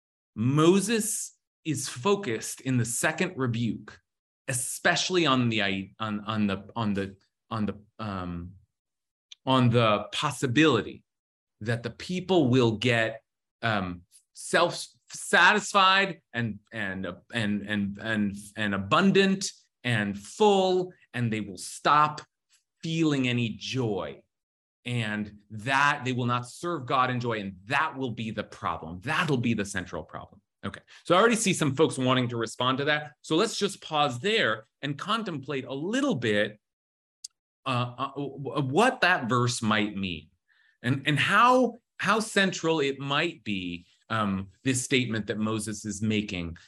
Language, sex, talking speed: English, male, 140 wpm